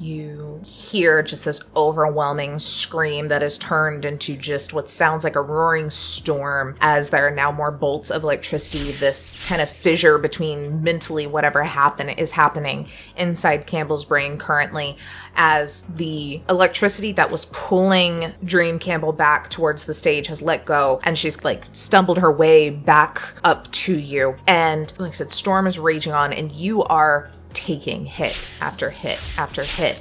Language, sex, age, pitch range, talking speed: English, female, 20-39, 145-170 Hz, 160 wpm